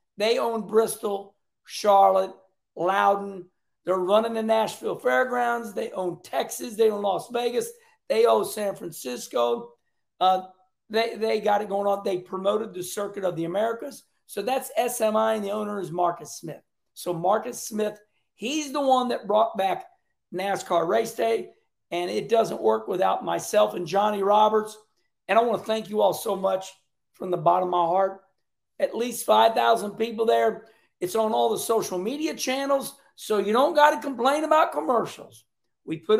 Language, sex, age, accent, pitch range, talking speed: English, male, 50-69, American, 185-240 Hz, 170 wpm